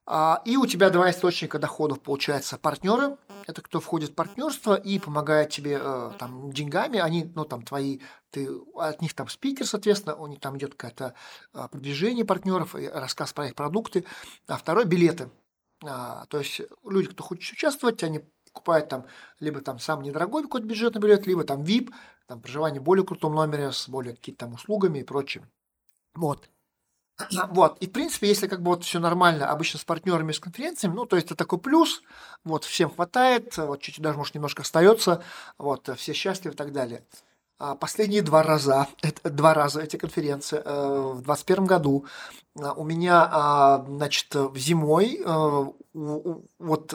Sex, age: male, 40-59